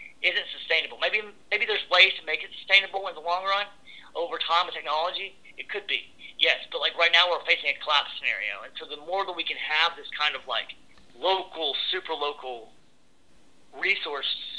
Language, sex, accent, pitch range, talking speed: English, male, American, 135-180 Hz, 195 wpm